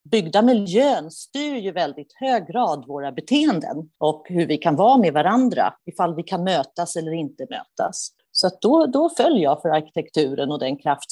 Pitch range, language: 150-195 Hz, Swedish